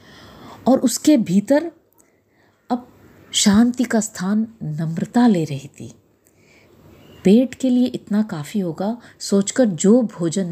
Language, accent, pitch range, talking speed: Hindi, native, 185-245 Hz, 115 wpm